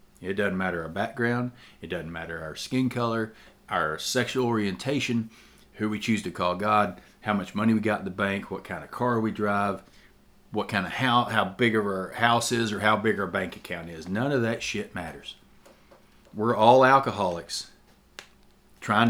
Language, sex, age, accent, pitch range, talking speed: English, male, 40-59, American, 95-125 Hz, 190 wpm